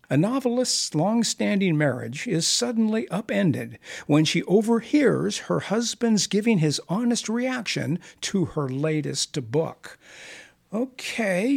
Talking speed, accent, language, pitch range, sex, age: 110 wpm, American, English, 145-215 Hz, male, 60-79